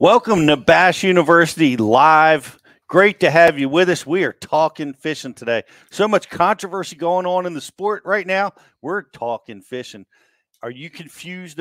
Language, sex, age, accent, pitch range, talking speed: English, male, 40-59, American, 120-155 Hz, 165 wpm